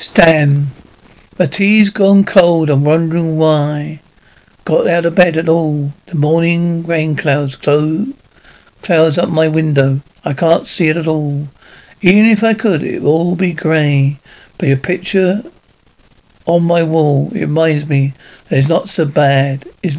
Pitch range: 145-180 Hz